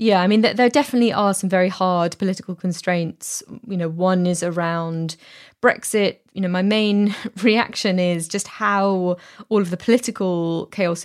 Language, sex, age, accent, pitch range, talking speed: English, female, 20-39, British, 180-205 Hz, 165 wpm